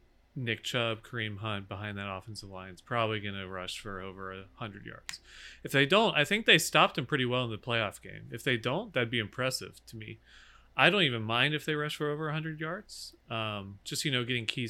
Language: English